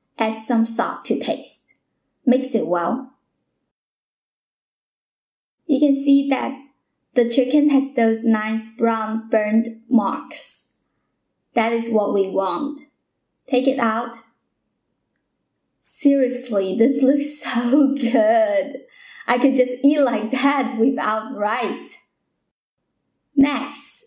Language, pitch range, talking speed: English, 225-275 Hz, 105 wpm